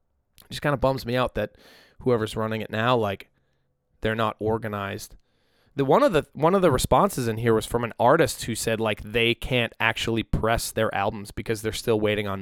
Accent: American